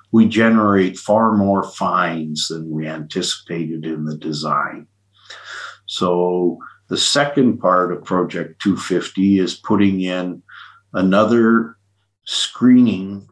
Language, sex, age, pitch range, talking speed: English, male, 50-69, 85-100 Hz, 105 wpm